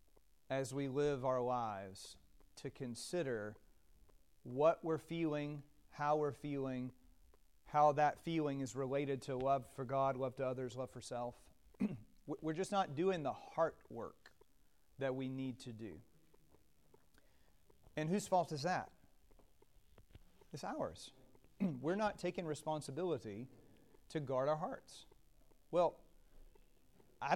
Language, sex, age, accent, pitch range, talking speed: English, male, 40-59, American, 130-170 Hz, 125 wpm